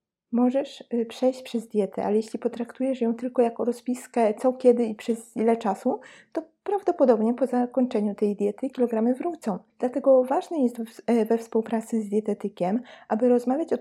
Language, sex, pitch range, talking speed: Polish, female, 215-250 Hz, 150 wpm